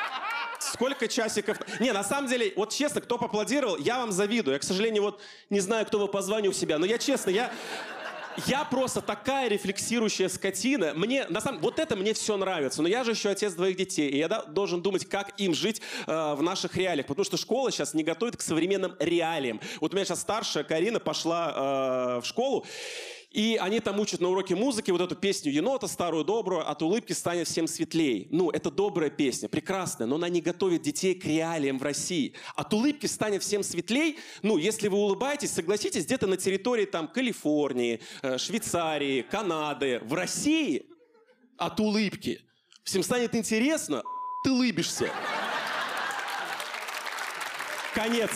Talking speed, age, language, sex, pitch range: 170 wpm, 30-49, Russian, male, 175-240 Hz